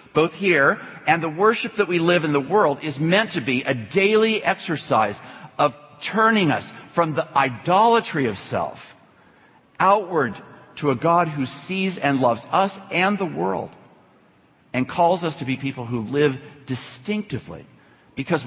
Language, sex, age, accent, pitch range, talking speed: English, male, 50-69, American, 115-150 Hz, 155 wpm